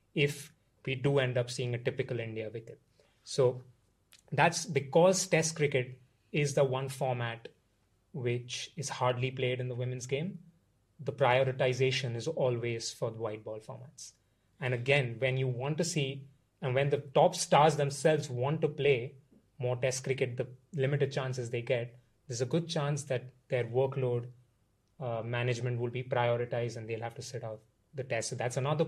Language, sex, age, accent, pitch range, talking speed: English, male, 30-49, Indian, 120-145 Hz, 170 wpm